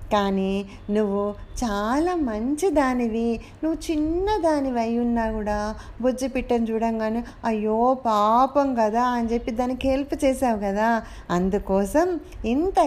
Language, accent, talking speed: Telugu, native, 105 wpm